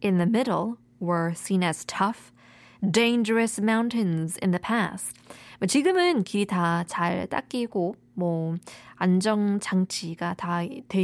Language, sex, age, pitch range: Korean, female, 20-39, 190-280 Hz